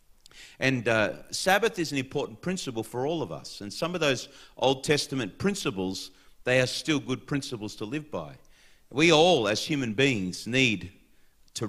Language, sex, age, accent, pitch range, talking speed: English, male, 50-69, Australian, 115-150 Hz, 170 wpm